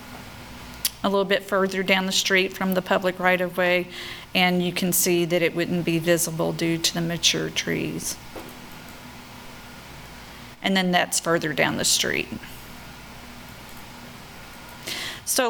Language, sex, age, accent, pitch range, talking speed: English, female, 40-59, American, 180-190 Hz, 130 wpm